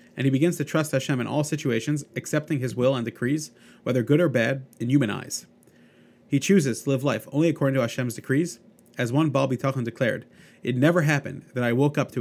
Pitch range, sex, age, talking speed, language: 120-150 Hz, male, 30-49, 215 wpm, English